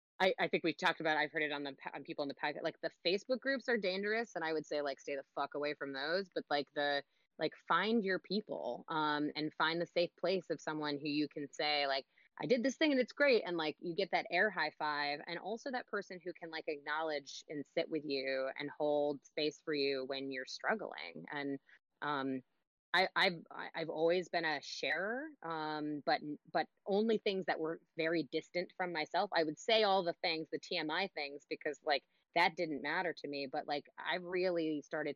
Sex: female